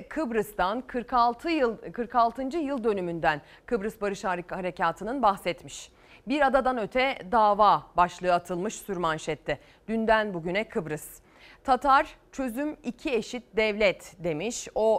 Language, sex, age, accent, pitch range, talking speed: Turkish, female, 30-49, native, 195-275 Hz, 110 wpm